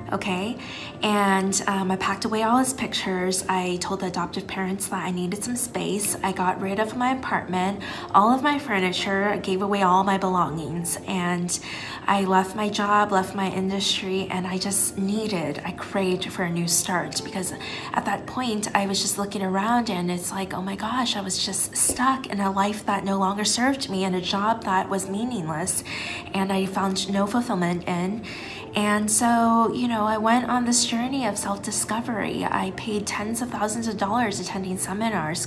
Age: 20-39